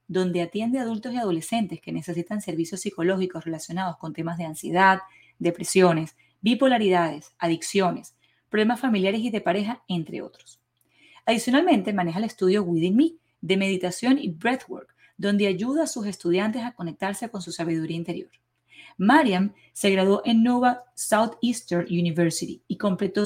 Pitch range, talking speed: 175-230 Hz, 140 wpm